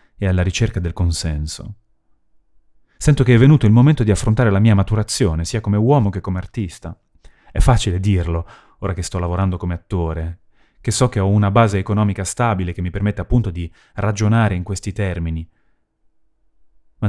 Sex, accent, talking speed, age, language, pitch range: male, native, 170 wpm, 30-49, Italian, 90-110 Hz